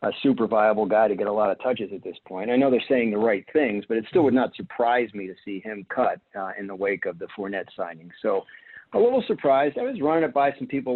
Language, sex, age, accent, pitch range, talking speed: English, male, 40-59, American, 110-135 Hz, 275 wpm